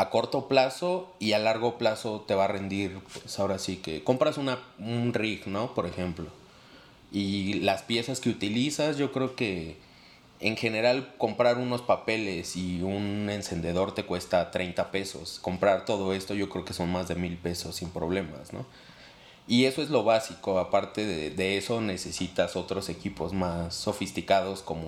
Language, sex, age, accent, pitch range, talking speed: Spanish, male, 30-49, Mexican, 90-110 Hz, 170 wpm